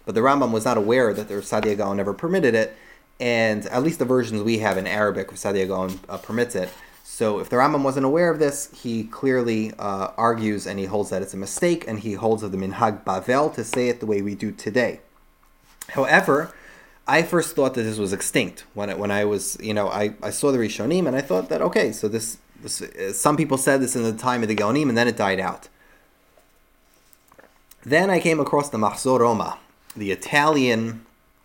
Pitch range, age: 100-125 Hz, 20-39